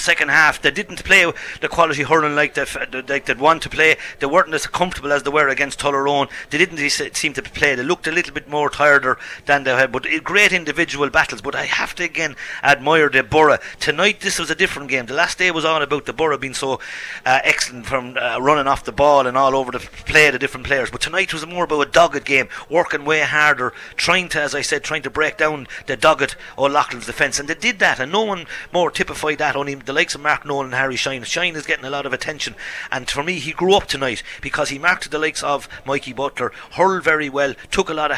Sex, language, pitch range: male, English, 135-155 Hz